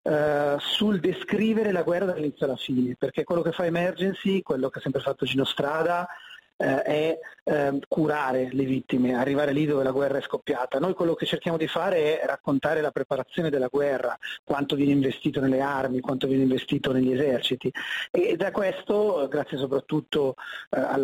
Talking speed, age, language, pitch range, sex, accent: 165 wpm, 30-49, Italian, 140-175 Hz, male, native